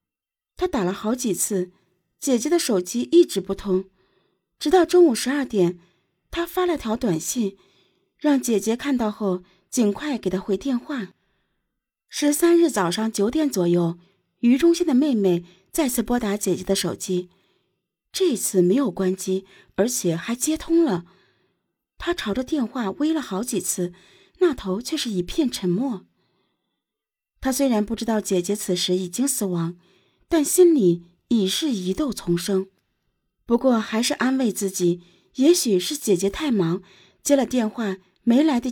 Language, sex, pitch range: Chinese, female, 185-275 Hz